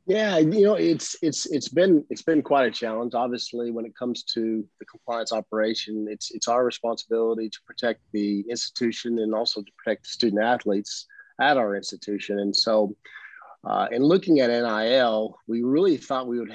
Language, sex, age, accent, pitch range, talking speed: English, male, 40-59, American, 105-120 Hz, 180 wpm